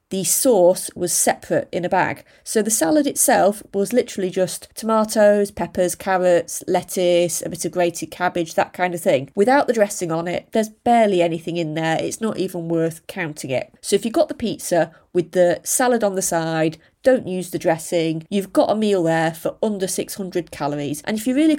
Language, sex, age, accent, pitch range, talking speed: English, female, 30-49, British, 175-220 Hz, 200 wpm